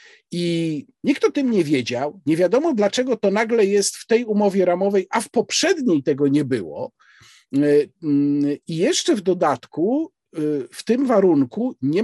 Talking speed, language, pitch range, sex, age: 150 wpm, Polish, 165-255 Hz, male, 50-69